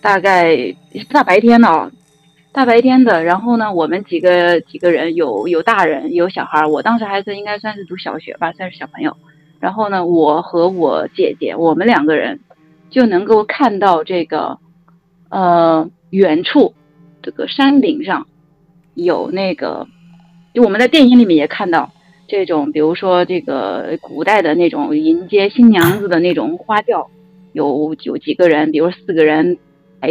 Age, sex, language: 20-39, female, Chinese